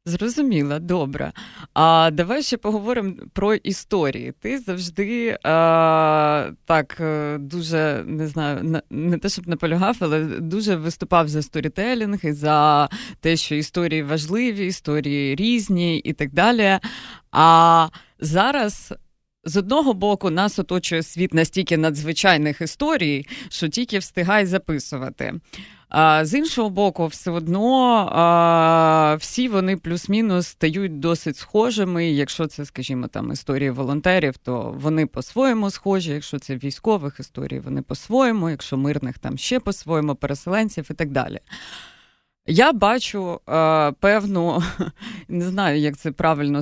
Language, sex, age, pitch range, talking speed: Ukrainian, female, 20-39, 150-195 Hz, 125 wpm